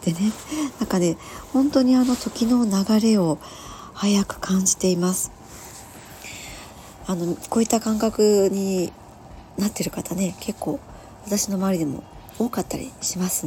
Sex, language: male, Japanese